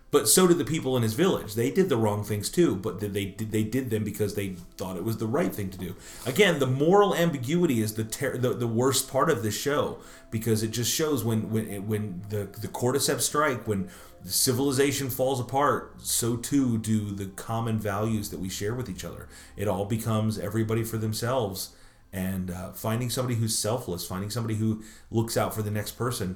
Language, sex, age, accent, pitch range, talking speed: English, male, 30-49, American, 95-115 Hz, 210 wpm